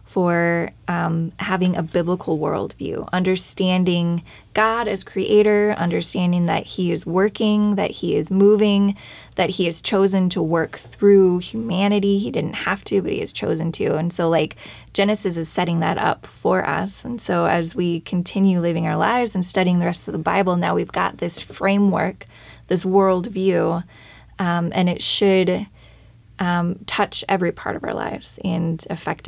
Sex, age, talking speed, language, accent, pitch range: female, 20-39, 165 wpm, English, American, 165-200 Hz